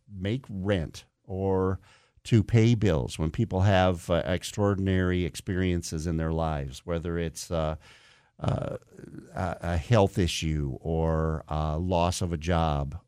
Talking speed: 130 wpm